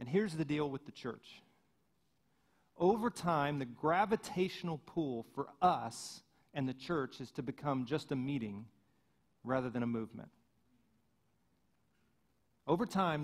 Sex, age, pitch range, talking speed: male, 40-59, 140-185 Hz, 130 wpm